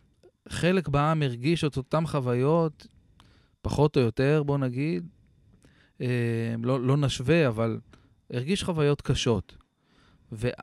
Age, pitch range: 20-39, 115-140 Hz